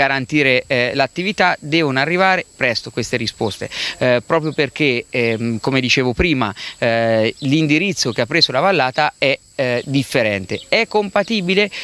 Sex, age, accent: male, 30-49, native